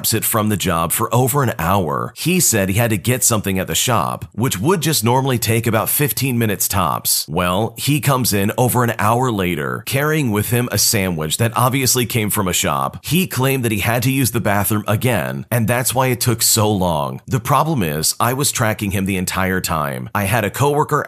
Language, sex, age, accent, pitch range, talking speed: English, male, 30-49, American, 100-130 Hz, 220 wpm